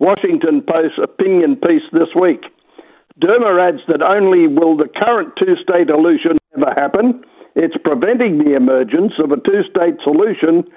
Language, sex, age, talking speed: English, male, 60-79, 140 wpm